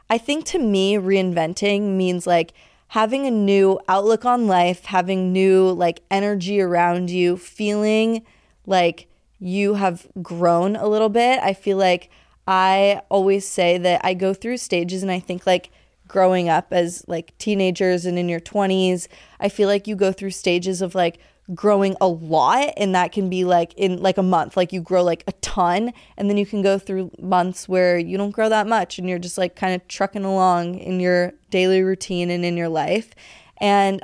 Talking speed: 190 wpm